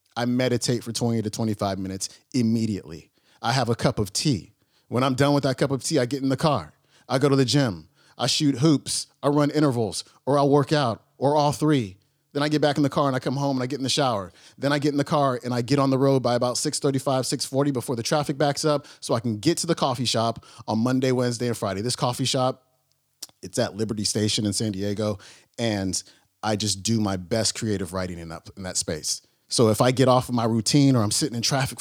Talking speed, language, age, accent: 245 wpm, English, 30-49, American